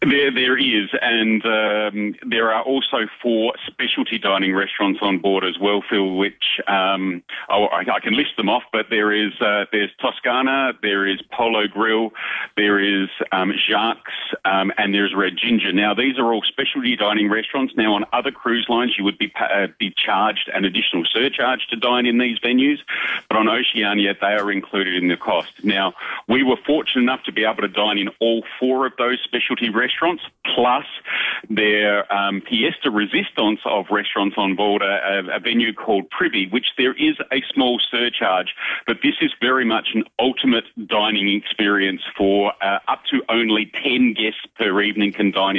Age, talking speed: 40-59, 180 wpm